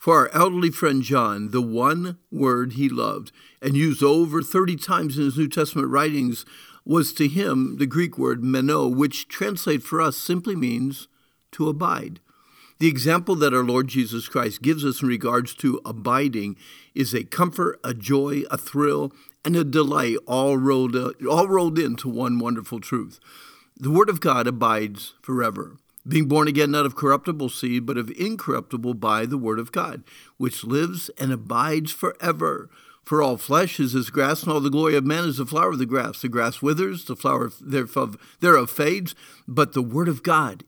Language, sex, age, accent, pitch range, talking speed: English, male, 50-69, American, 125-155 Hz, 180 wpm